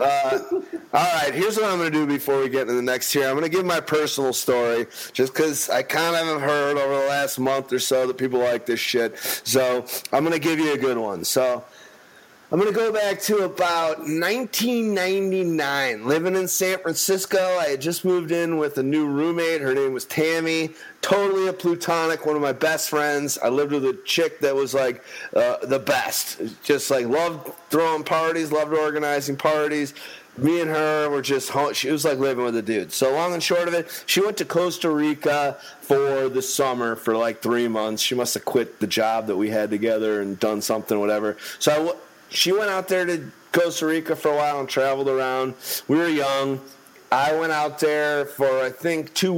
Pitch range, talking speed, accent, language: 130-170 Hz, 210 wpm, American, English